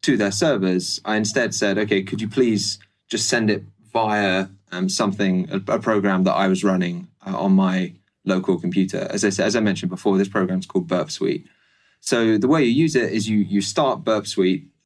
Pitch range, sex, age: 95-115 Hz, male, 20-39